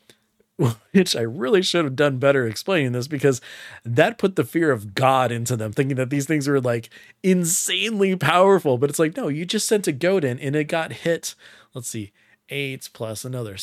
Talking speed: 195 wpm